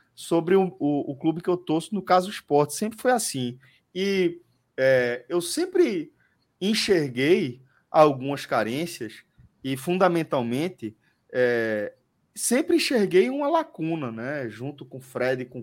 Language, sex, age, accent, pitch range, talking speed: Portuguese, male, 20-39, Brazilian, 120-170 Hz, 125 wpm